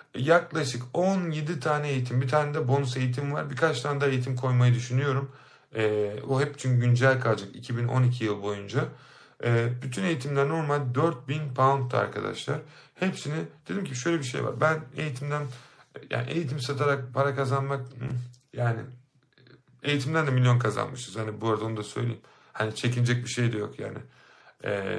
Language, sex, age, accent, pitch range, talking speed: Turkish, male, 50-69, native, 120-145 Hz, 155 wpm